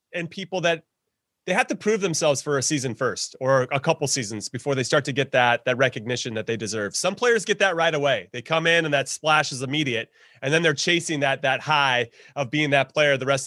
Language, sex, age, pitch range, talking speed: English, male, 30-49, 130-170 Hz, 240 wpm